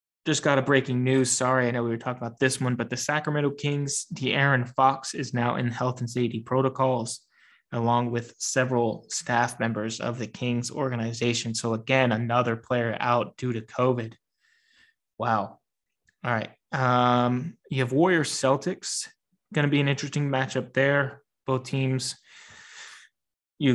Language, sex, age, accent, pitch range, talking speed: English, male, 20-39, American, 120-145 Hz, 160 wpm